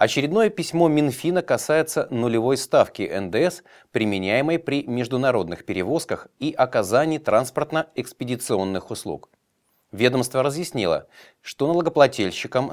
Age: 30-49